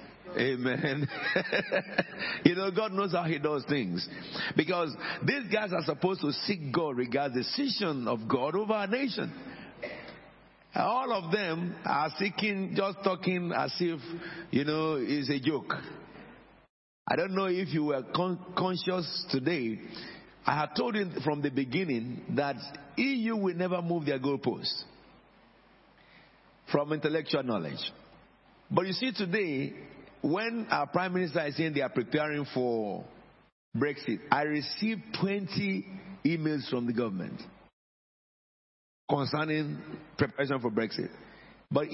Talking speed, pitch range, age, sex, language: 135 wpm, 145-195 Hz, 50-69, male, English